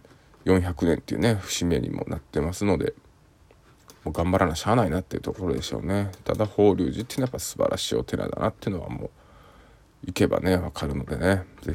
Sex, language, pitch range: male, Japanese, 80-100 Hz